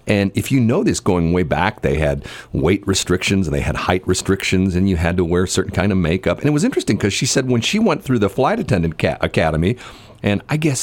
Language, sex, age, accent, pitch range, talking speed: English, male, 50-69, American, 85-110 Hz, 250 wpm